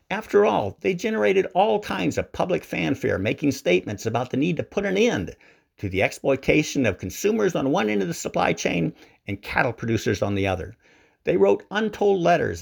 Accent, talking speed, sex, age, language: American, 190 wpm, male, 50-69, English